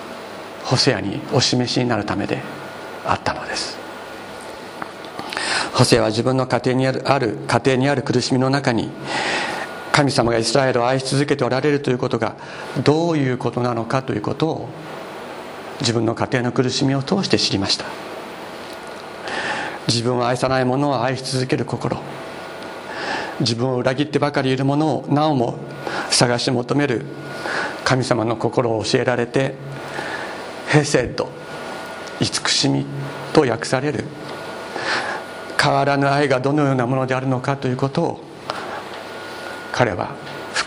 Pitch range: 125-145 Hz